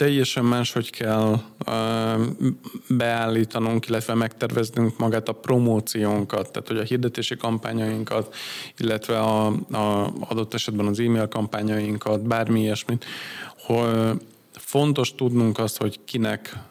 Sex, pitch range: male, 110-125 Hz